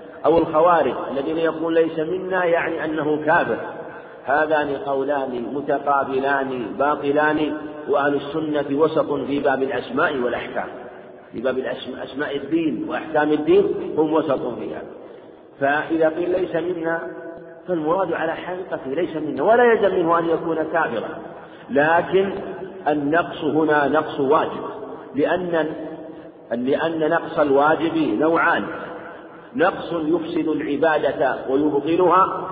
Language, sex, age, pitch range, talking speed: Arabic, male, 50-69, 150-175 Hz, 105 wpm